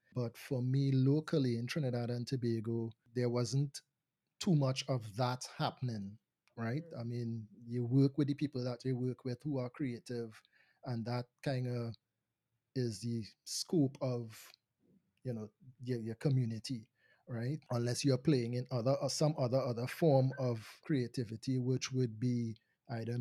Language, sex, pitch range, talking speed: English, male, 120-140 Hz, 155 wpm